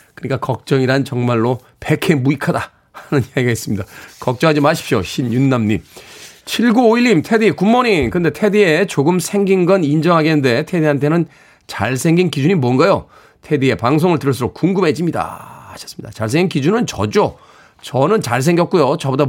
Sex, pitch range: male, 140-195 Hz